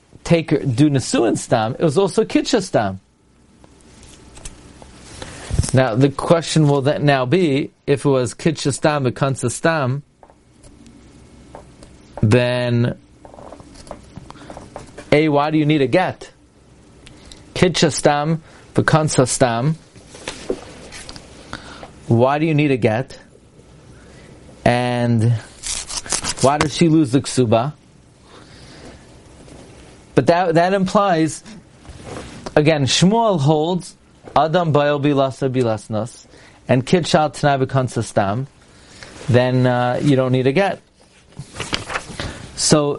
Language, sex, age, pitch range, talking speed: English, male, 40-59, 120-155 Hz, 95 wpm